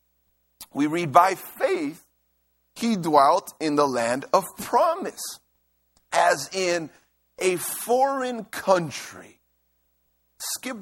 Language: English